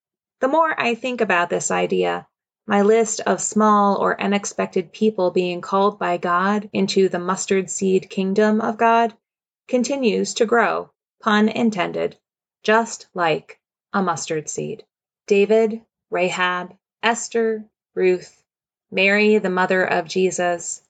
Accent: American